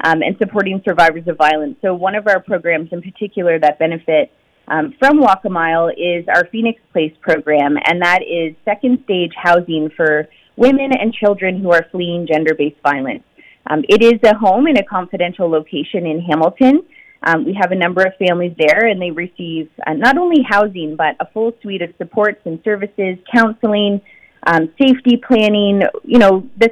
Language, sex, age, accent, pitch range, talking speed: English, female, 30-49, American, 165-215 Hz, 175 wpm